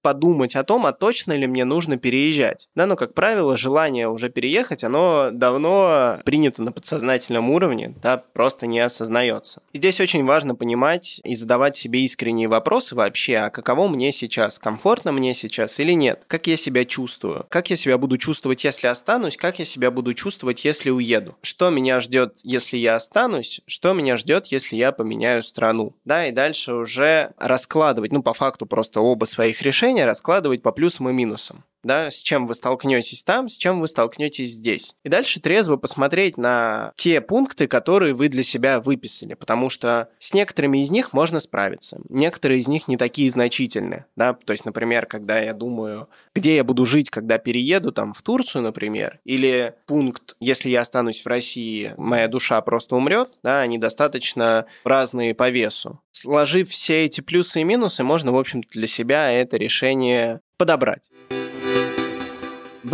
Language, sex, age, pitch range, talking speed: Russian, male, 20-39, 120-150 Hz, 165 wpm